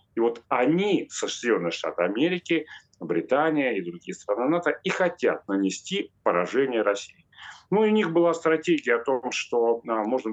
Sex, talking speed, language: male, 145 wpm, Russian